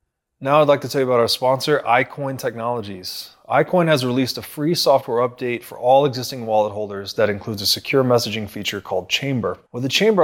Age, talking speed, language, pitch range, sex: 20-39, 200 wpm, English, 115-145 Hz, male